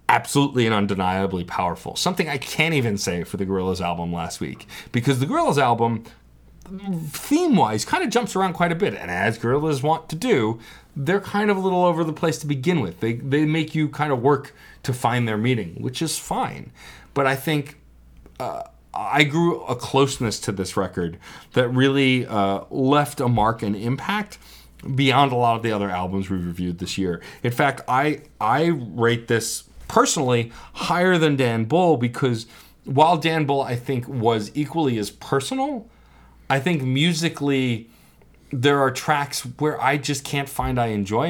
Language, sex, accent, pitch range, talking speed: English, male, American, 115-160 Hz, 180 wpm